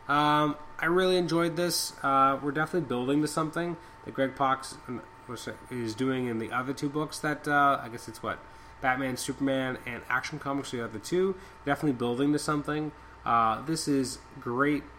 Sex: male